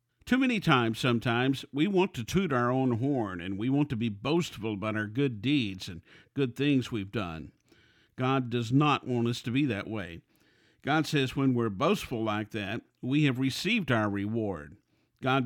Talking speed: 185 wpm